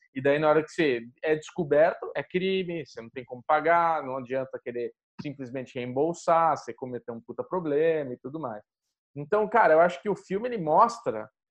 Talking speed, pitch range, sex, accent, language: 195 wpm, 145-225 Hz, male, Brazilian, Portuguese